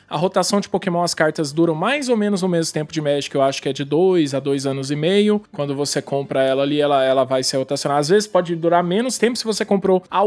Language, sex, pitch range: Portuguese, male, 155-200 Hz